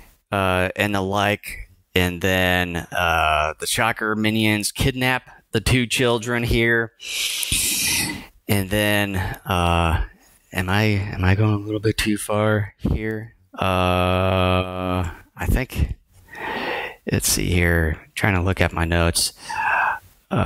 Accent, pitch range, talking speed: American, 95-110 Hz, 120 wpm